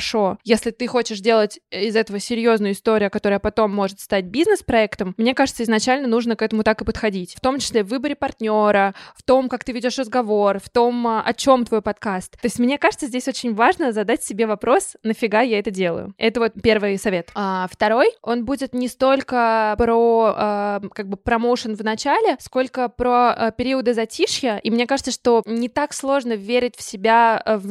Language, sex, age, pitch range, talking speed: Russian, female, 20-39, 220-255 Hz, 180 wpm